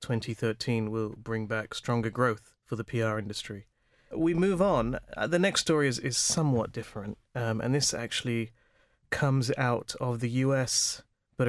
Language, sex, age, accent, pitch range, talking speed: English, male, 30-49, British, 115-130 Hz, 155 wpm